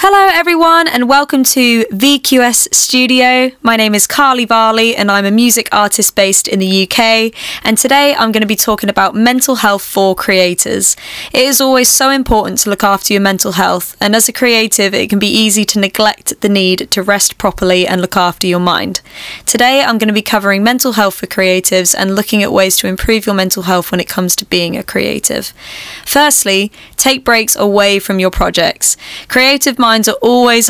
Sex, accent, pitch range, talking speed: female, British, 195-235 Hz, 195 wpm